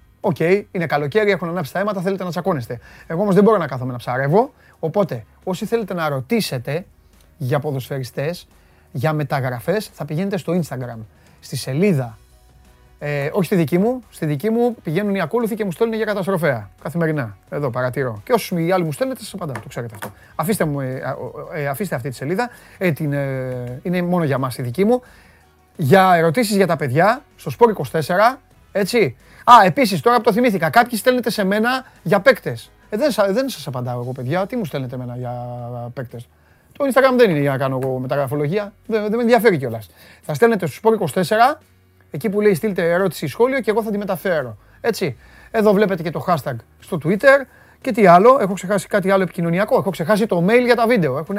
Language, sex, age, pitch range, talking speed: Greek, male, 30-49, 135-210 Hz, 200 wpm